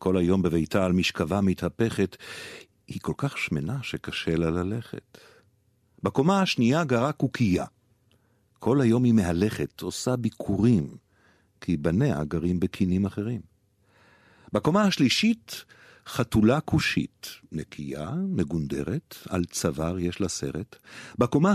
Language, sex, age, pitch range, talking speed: Hebrew, male, 50-69, 95-135 Hz, 110 wpm